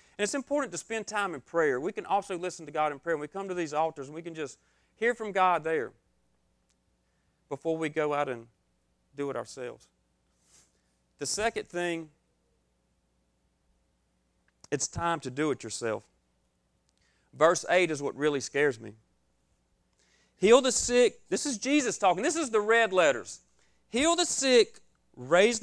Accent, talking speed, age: American, 160 wpm, 40-59